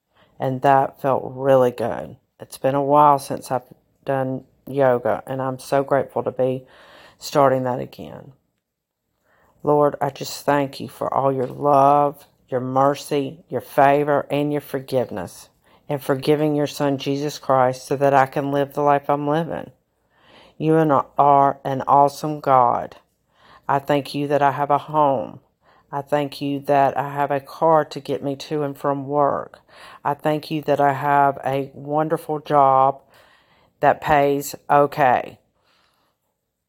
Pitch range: 135-150 Hz